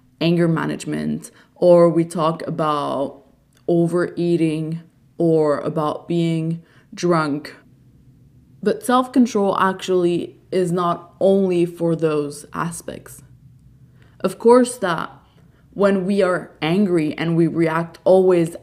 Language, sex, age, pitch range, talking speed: English, female, 20-39, 155-195 Hz, 100 wpm